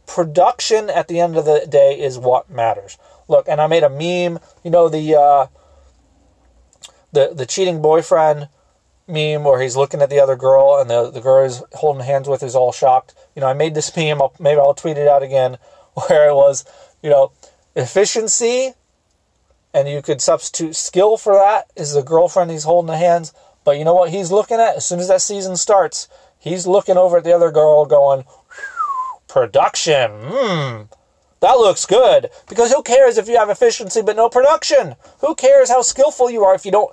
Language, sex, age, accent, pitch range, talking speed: English, male, 30-49, American, 140-200 Hz, 195 wpm